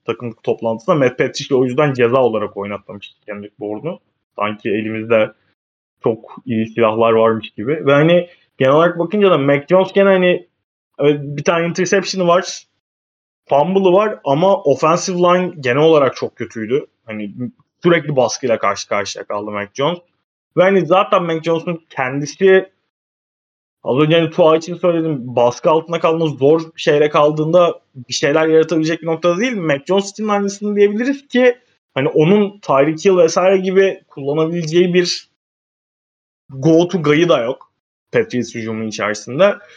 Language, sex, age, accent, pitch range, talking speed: Turkish, male, 20-39, native, 130-180 Hz, 140 wpm